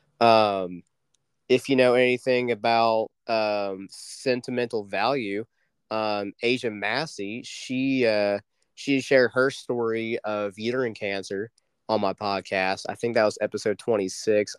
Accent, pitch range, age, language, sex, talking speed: American, 105-125 Hz, 20-39, English, male, 130 wpm